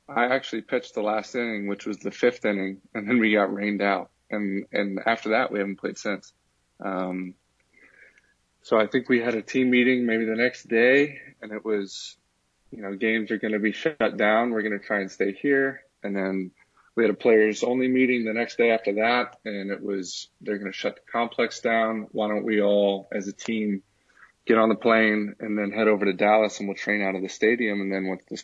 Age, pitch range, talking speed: 20-39, 100-110 Hz, 225 wpm